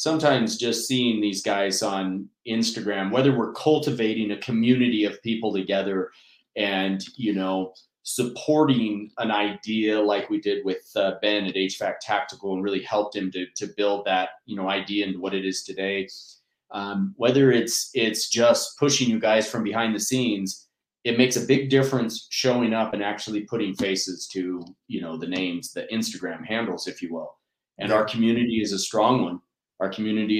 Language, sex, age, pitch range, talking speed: English, male, 30-49, 100-115 Hz, 175 wpm